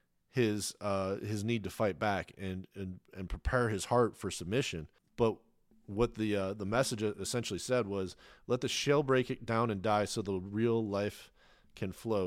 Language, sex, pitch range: English, male, 100-120 Hz